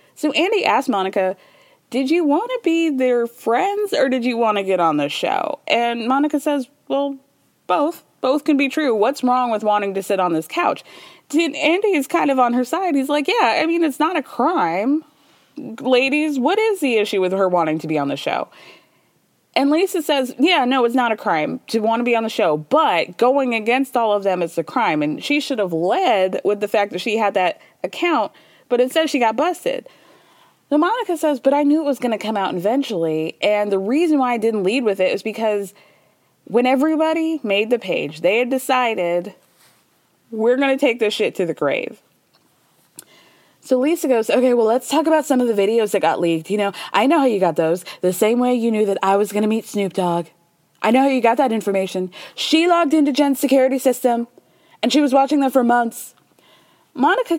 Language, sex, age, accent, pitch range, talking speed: English, female, 20-39, American, 210-295 Hz, 215 wpm